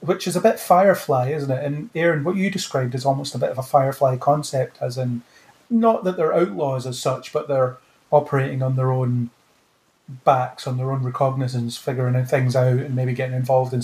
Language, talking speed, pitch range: English, 205 wpm, 130-160 Hz